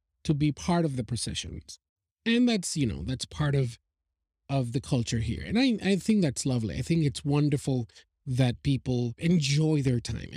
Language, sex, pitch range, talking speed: English, male, 120-155 Hz, 185 wpm